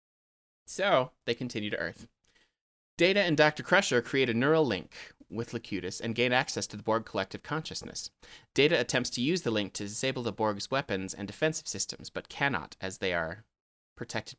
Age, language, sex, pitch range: 30-49, English, male, 100-125 Hz